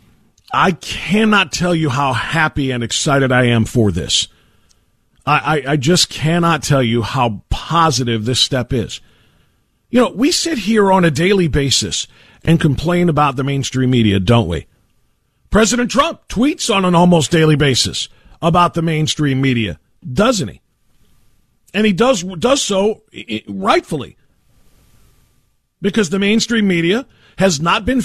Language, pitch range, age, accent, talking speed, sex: English, 135-220 Hz, 50-69, American, 145 wpm, male